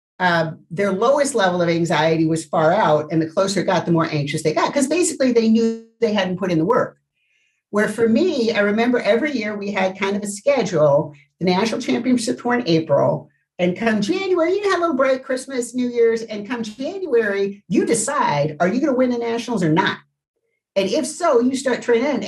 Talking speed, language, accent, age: 215 wpm, English, American, 50-69